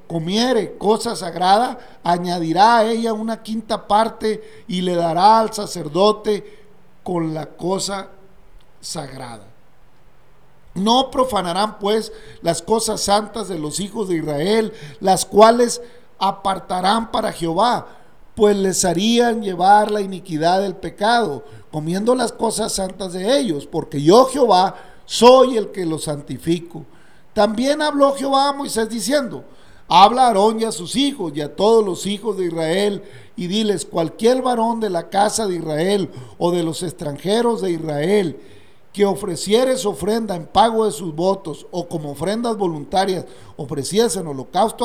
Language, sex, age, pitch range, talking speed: Spanish, male, 50-69, 175-220 Hz, 140 wpm